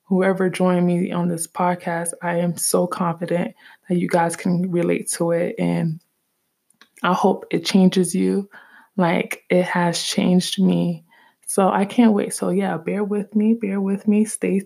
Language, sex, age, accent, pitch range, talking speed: English, female, 20-39, American, 175-200 Hz, 170 wpm